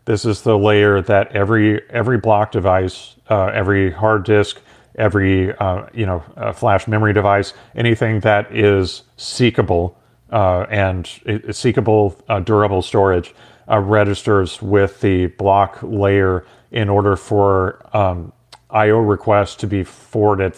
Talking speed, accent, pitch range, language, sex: 135 wpm, American, 95-110 Hz, English, male